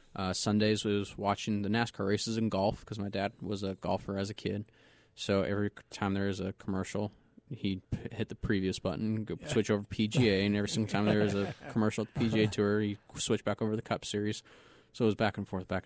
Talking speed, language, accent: 240 wpm, English, American